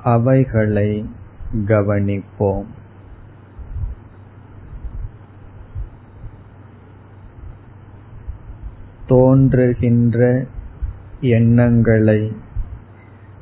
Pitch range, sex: 100-115 Hz, male